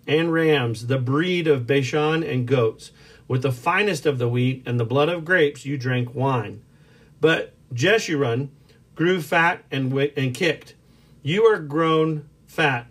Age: 50-69